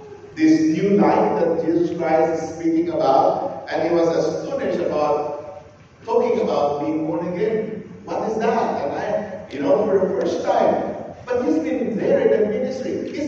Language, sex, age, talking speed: English, male, 50-69, 170 wpm